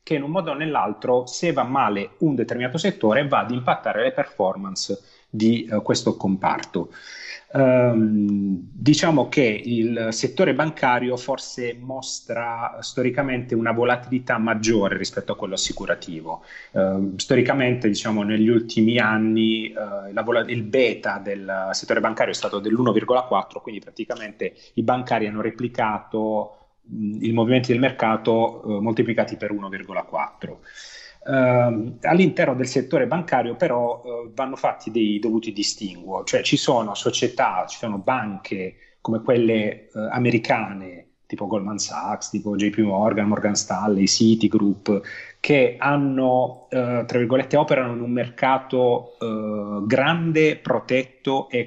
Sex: male